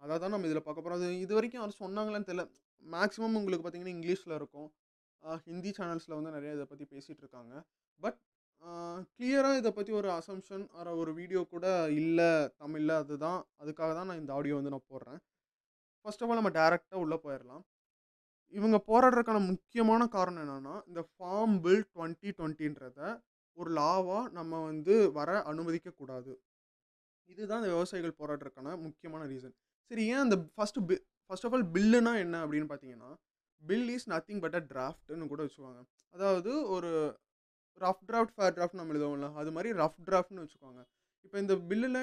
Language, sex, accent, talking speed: Tamil, male, native, 155 wpm